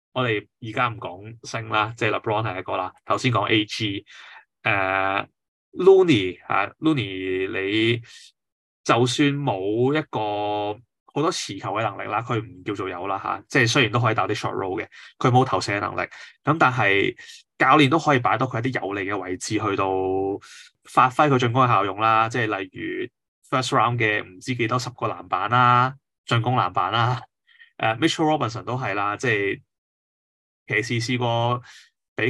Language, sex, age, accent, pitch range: Chinese, male, 20-39, native, 105-130 Hz